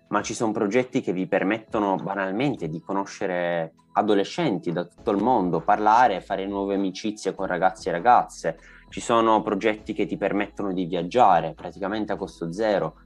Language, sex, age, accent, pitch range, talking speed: Italian, male, 20-39, native, 95-110 Hz, 160 wpm